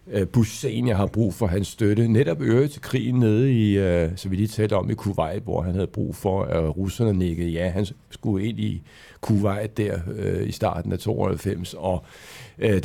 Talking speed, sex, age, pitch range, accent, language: 200 wpm, male, 60-79, 100-125 Hz, native, Danish